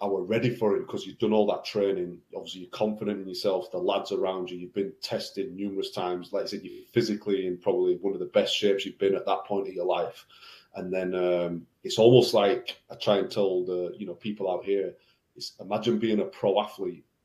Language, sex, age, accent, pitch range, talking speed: English, male, 30-49, British, 95-120 Hz, 230 wpm